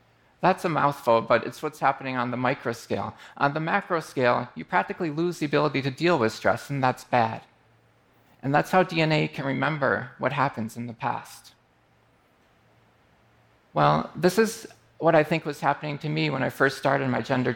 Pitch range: 130-165 Hz